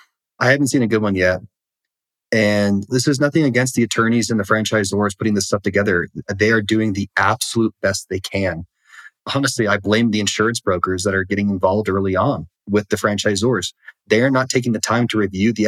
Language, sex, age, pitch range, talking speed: English, male, 30-49, 95-115 Hz, 205 wpm